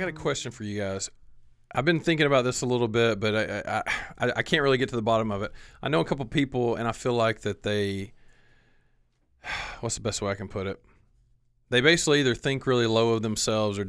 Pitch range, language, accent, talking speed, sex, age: 100-120 Hz, English, American, 240 wpm, male, 40-59